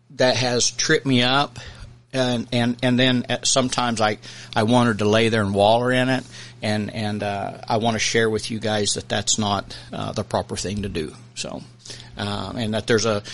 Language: English